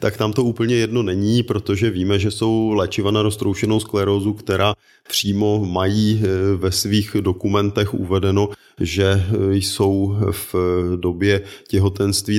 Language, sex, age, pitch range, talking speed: Czech, male, 30-49, 95-105 Hz, 125 wpm